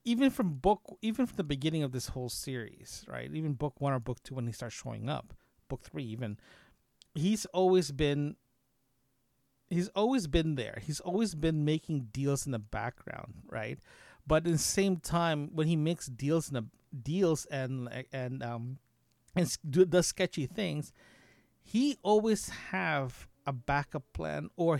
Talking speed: 160 wpm